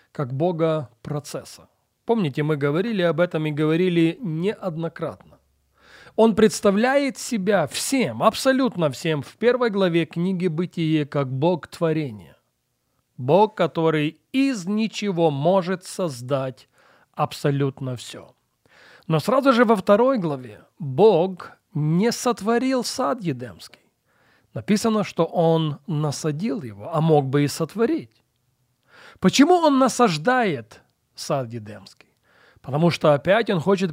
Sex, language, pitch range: male, Russian, 145-205 Hz